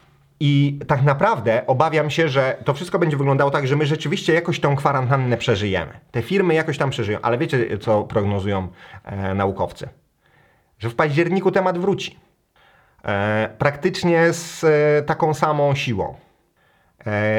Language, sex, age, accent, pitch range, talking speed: Polish, male, 30-49, native, 115-150 Hz, 145 wpm